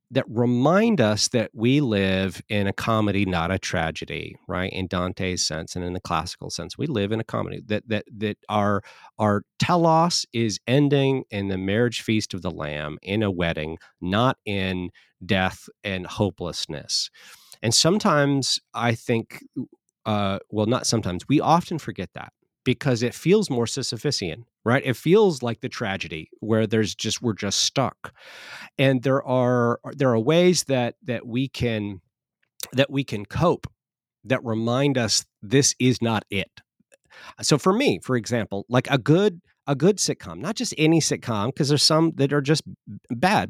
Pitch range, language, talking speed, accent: 100-140 Hz, English, 165 wpm, American